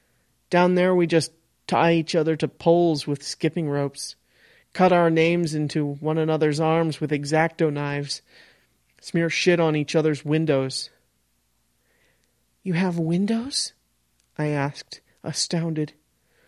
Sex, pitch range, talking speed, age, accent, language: male, 140-170 Hz, 125 wpm, 30-49, American, English